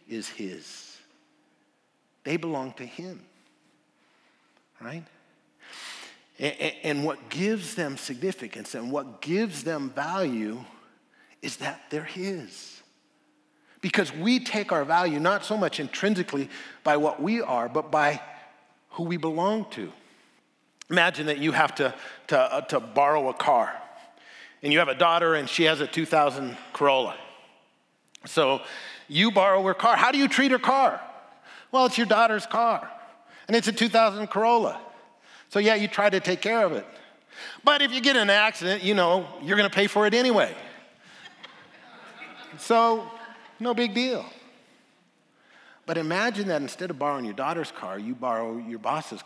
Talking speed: 155 wpm